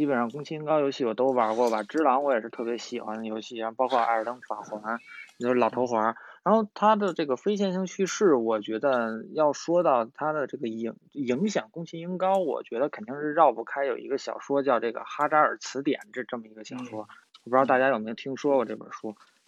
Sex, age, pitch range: male, 20-39, 120-165 Hz